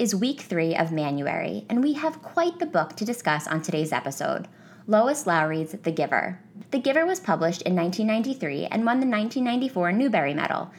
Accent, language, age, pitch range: American, English, 10-29, 170-235 Hz